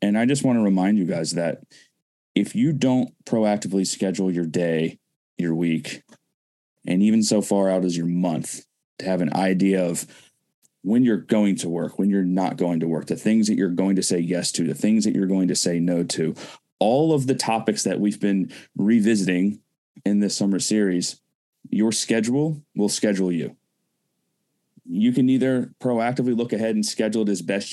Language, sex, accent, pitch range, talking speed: English, male, American, 95-120 Hz, 190 wpm